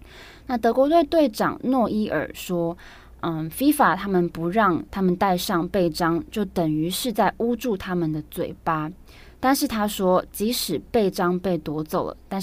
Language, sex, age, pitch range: Chinese, female, 20-39, 165-220 Hz